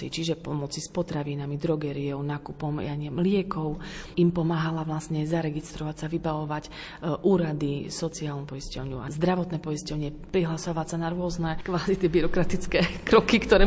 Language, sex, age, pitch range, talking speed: Slovak, female, 30-49, 145-170 Hz, 130 wpm